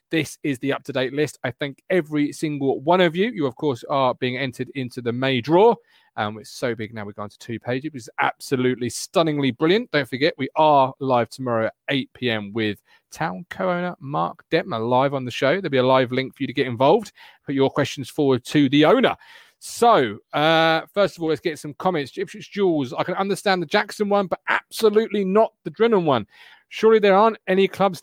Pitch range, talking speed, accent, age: 130-195 Hz, 215 wpm, British, 30-49